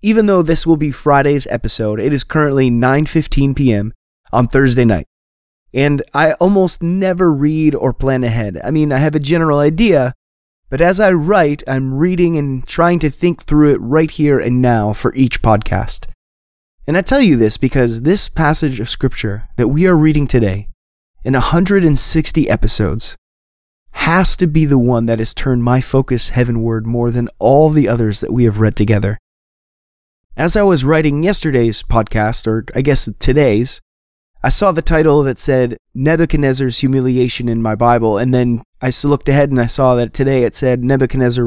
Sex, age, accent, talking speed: male, 20-39, American, 175 wpm